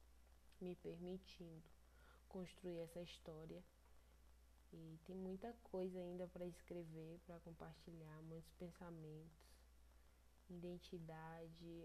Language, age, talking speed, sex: Portuguese, 20-39, 85 wpm, female